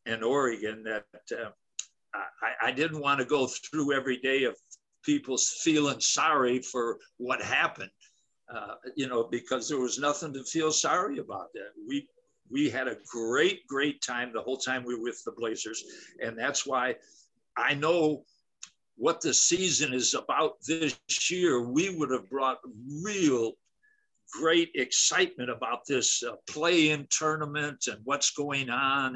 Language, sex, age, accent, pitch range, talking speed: English, male, 60-79, American, 125-155 Hz, 155 wpm